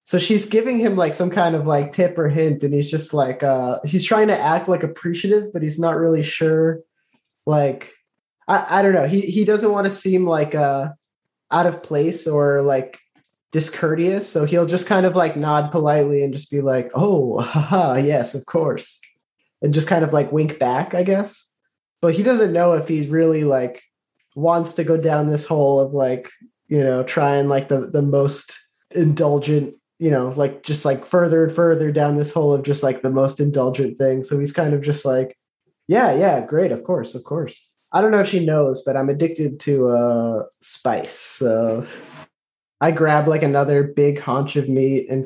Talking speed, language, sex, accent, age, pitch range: 200 wpm, English, male, American, 20-39, 140-170 Hz